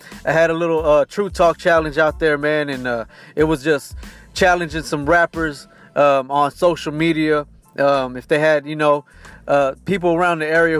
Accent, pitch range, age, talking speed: American, 150-180 Hz, 20-39, 190 wpm